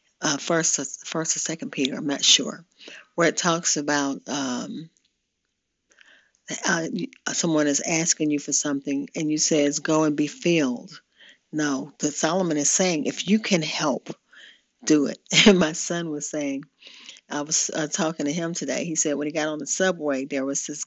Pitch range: 150-195 Hz